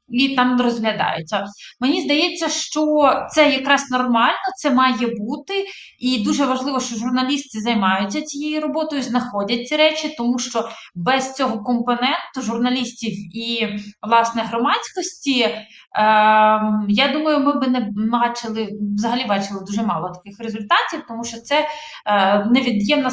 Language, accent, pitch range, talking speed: Ukrainian, native, 215-270 Hz, 130 wpm